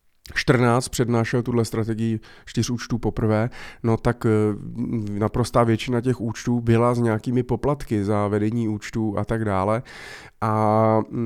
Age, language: 20-39, Czech